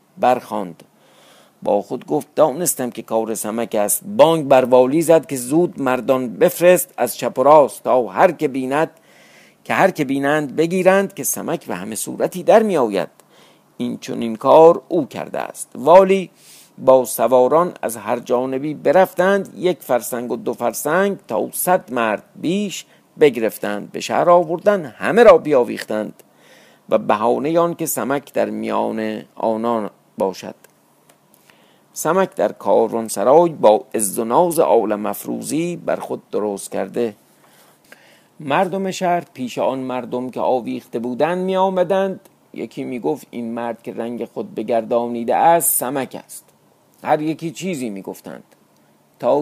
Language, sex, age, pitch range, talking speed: Persian, male, 50-69, 115-170 Hz, 145 wpm